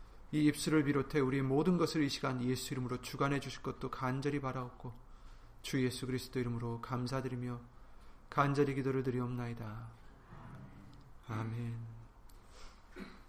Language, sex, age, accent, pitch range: Korean, male, 40-59, native, 115-150 Hz